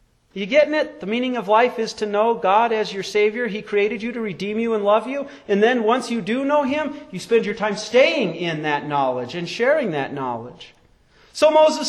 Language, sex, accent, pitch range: English, male, American, 195-285 Hz